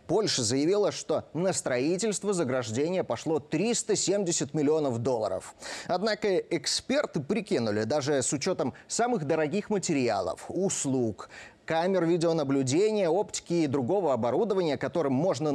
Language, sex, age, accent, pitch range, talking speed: Russian, male, 30-49, native, 135-190 Hz, 110 wpm